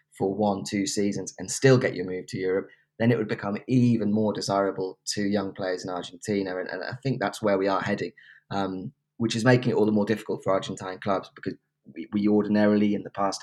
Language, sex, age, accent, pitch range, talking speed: English, male, 20-39, British, 95-115 Hz, 230 wpm